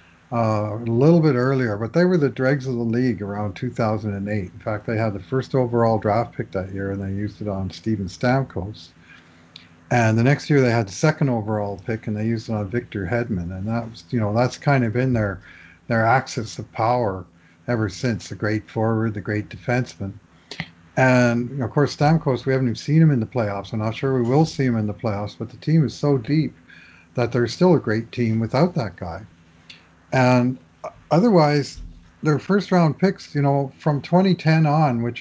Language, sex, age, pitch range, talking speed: English, male, 50-69, 105-130 Hz, 200 wpm